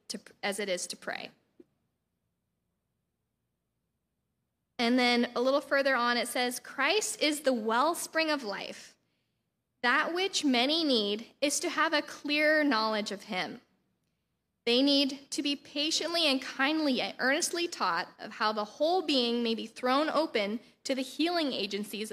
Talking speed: 145 wpm